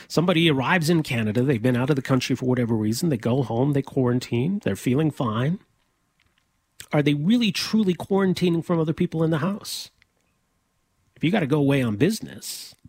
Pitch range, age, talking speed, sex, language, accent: 125-155 Hz, 40-59, 185 wpm, male, English, American